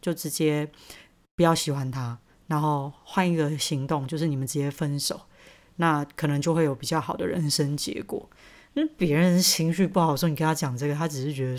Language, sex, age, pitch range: Chinese, female, 30-49, 150-180 Hz